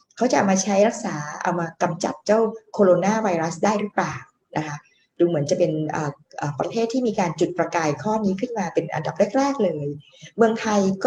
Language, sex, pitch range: Thai, female, 175-230 Hz